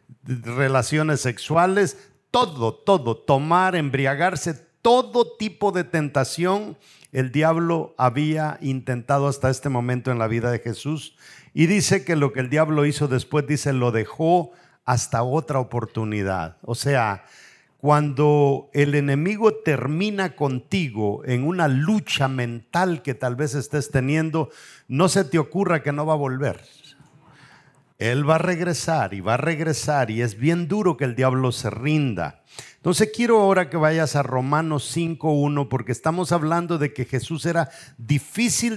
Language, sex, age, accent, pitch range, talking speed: English, male, 50-69, Mexican, 130-165 Hz, 145 wpm